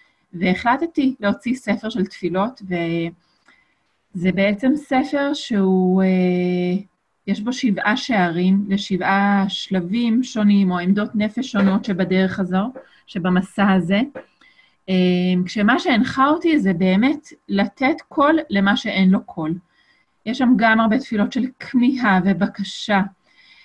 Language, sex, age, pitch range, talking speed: Hebrew, female, 30-49, 185-225 Hz, 110 wpm